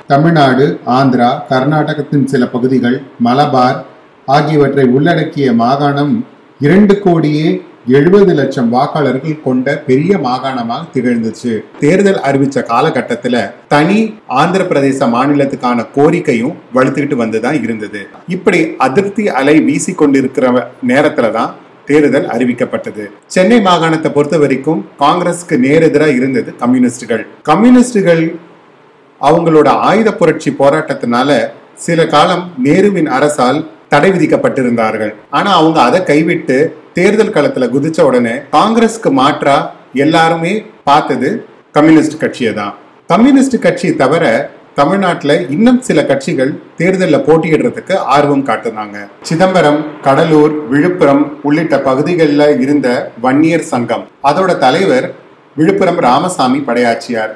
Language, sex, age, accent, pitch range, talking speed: Tamil, male, 30-49, native, 135-175 Hz, 95 wpm